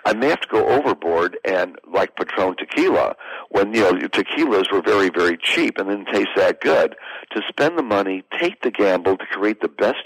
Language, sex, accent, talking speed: English, male, American, 210 wpm